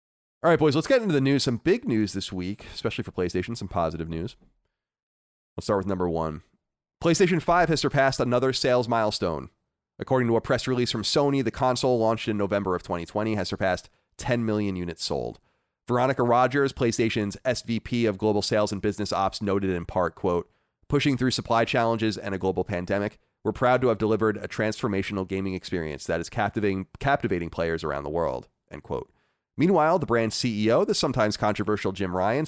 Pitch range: 95-125 Hz